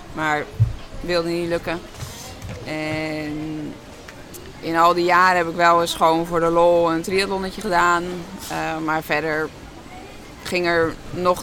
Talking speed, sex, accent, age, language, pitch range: 135 wpm, female, Dutch, 20-39, Dutch, 155-180 Hz